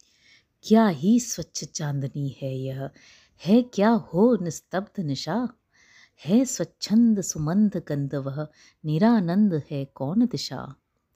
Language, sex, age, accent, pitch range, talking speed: Hindi, female, 50-69, native, 145-220 Hz, 85 wpm